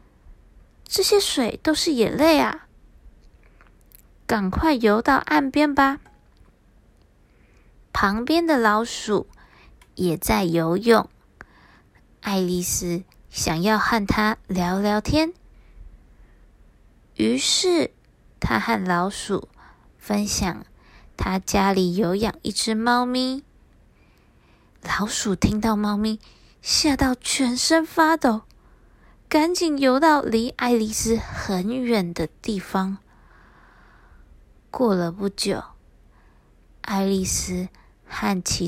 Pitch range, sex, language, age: 185-265 Hz, female, Chinese, 20-39